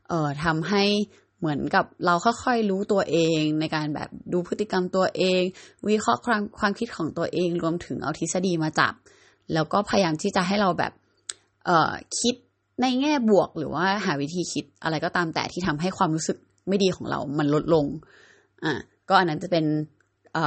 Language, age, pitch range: Thai, 20-39, 155-195 Hz